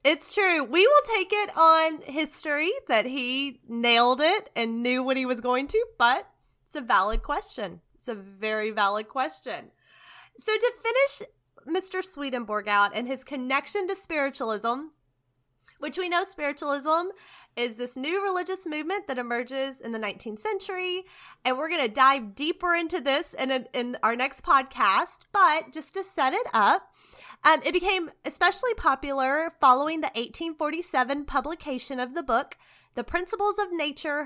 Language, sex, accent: English, female, American